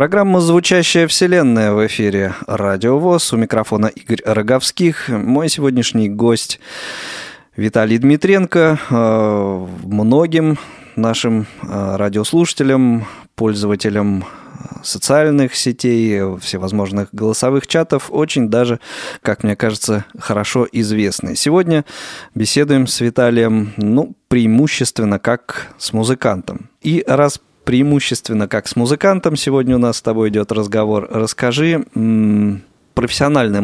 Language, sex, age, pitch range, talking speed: Russian, male, 20-39, 105-140 Hz, 100 wpm